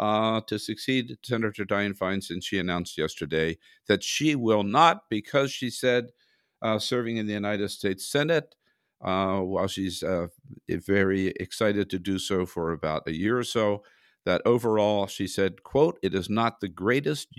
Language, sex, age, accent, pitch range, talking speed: English, male, 50-69, American, 95-130 Hz, 165 wpm